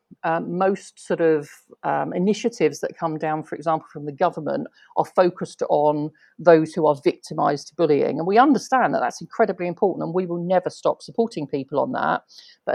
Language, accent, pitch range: English, British, 165-215 Hz